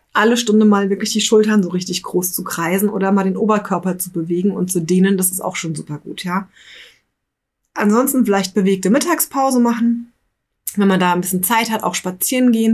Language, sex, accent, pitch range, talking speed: German, female, German, 180-220 Hz, 200 wpm